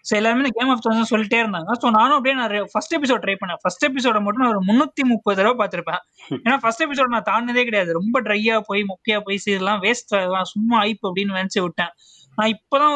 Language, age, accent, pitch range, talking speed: Tamil, 20-39, native, 195-240 Hz, 65 wpm